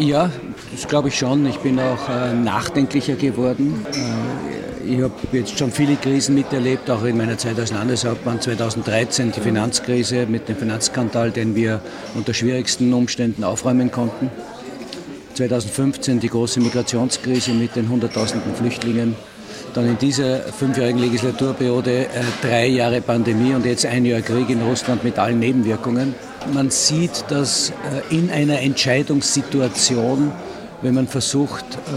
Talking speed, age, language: 135 wpm, 50-69, German